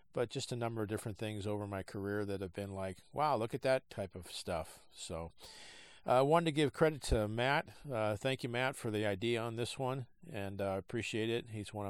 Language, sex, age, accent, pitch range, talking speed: English, male, 50-69, American, 100-120 Hz, 235 wpm